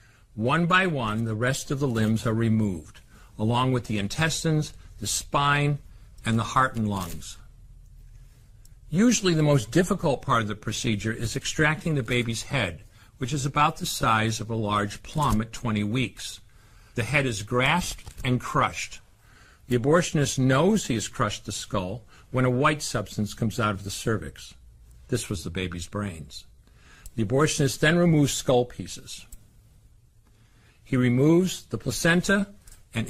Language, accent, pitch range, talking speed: French, American, 105-145 Hz, 155 wpm